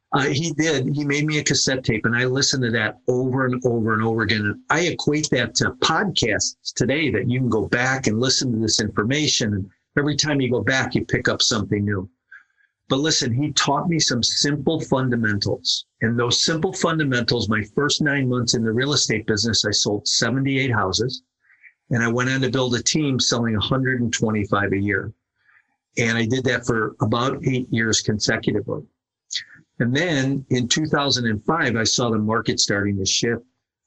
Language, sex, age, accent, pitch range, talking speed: English, male, 50-69, American, 110-130 Hz, 185 wpm